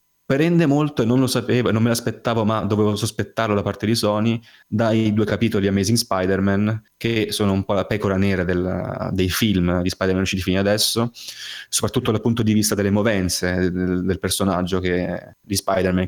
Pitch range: 95-110 Hz